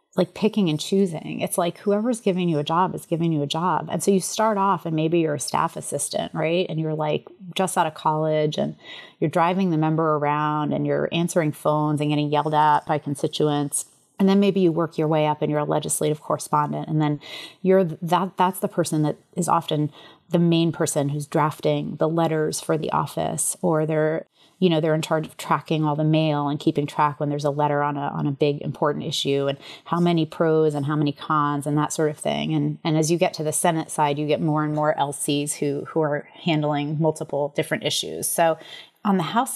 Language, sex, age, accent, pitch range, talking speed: English, female, 30-49, American, 150-175 Hz, 225 wpm